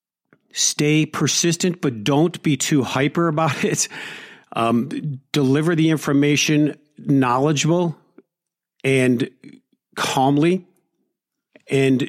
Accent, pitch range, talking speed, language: American, 125-145 Hz, 85 wpm, English